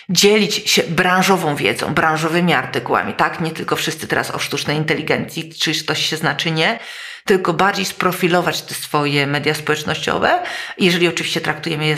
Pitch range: 155-185 Hz